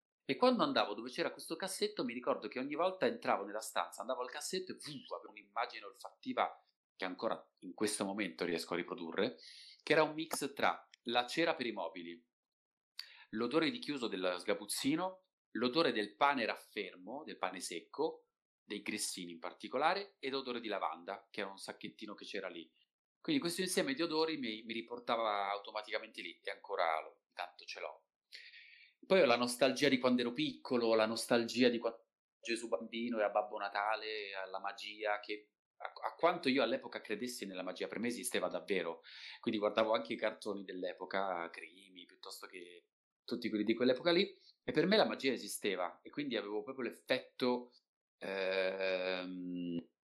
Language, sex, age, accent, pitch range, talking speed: Italian, male, 30-49, native, 105-165 Hz, 170 wpm